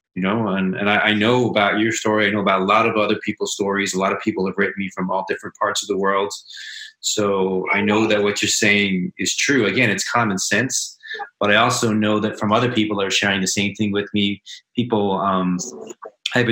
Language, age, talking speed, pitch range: English, 30-49, 235 wpm, 100-125 Hz